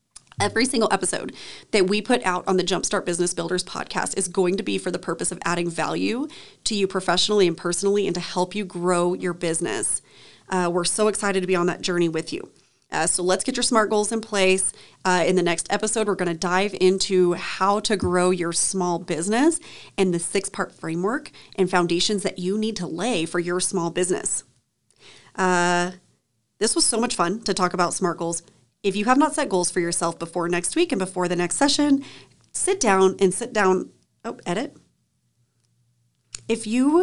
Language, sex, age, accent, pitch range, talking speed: English, female, 30-49, American, 175-210 Hz, 200 wpm